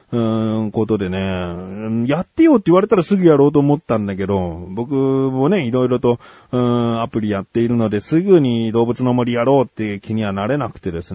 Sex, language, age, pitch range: male, Japanese, 40-59, 100-150 Hz